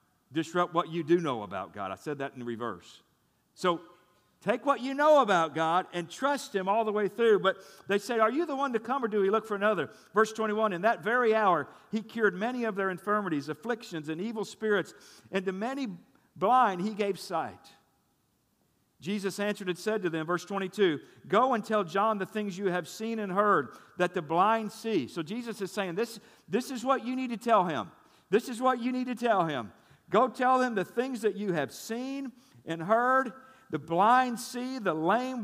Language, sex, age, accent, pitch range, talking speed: English, male, 50-69, American, 160-235 Hz, 210 wpm